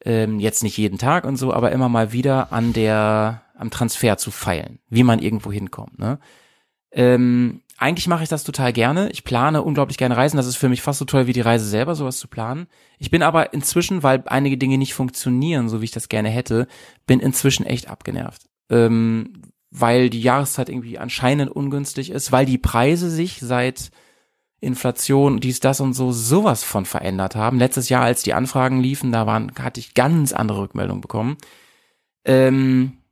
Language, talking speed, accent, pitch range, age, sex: German, 185 wpm, German, 120-145 Hz, 30-49, male